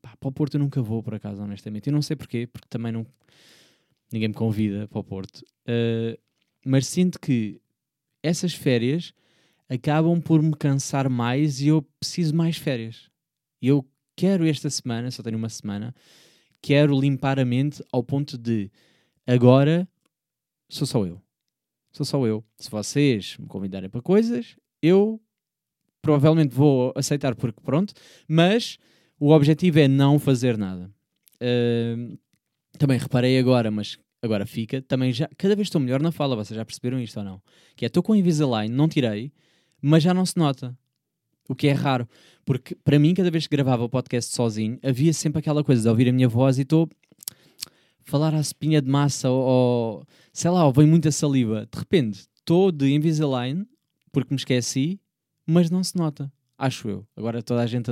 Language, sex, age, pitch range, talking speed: Portuguese, male, 20-39, 120-155 Hz, 175 wpm